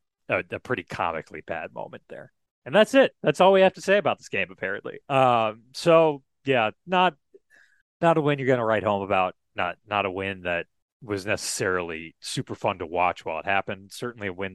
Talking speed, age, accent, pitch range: 200 wpm, 30-49, American, 90-140 Hz